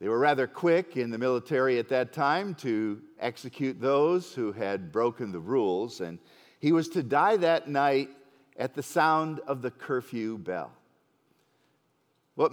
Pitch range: 125-185 Hz